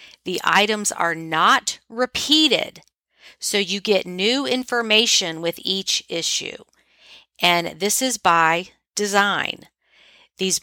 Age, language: 50-69, English